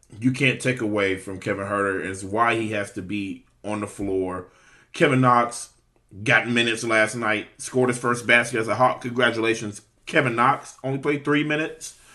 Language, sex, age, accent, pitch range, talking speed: English, male, 30-49, American, 105-130 Hz, 180 wpm